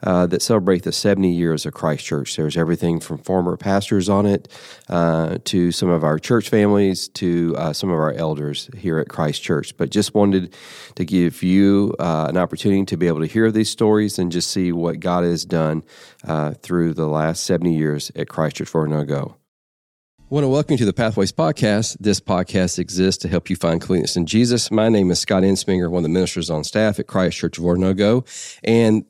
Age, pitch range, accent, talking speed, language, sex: 40-59, 90-115 Hz, American, 205 wpm, English, male